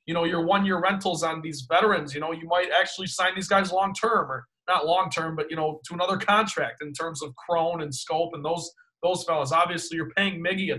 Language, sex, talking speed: English, male, 240 wpm